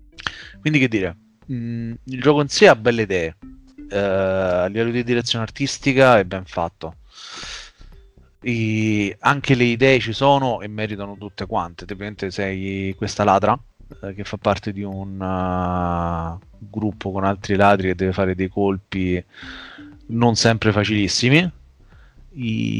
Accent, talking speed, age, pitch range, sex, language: native, 140 wpm, 30-49, 100-120 Hz, male, Italian